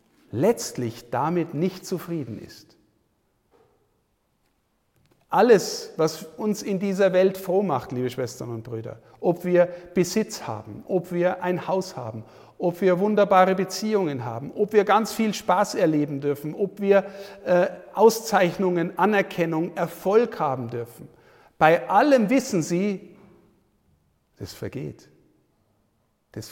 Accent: German